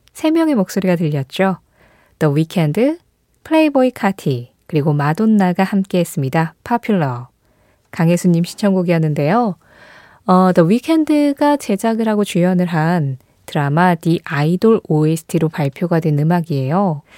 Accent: native